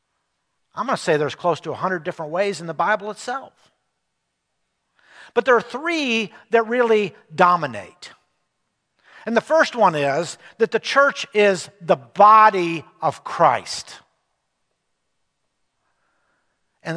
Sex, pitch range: male, 160-215 Hz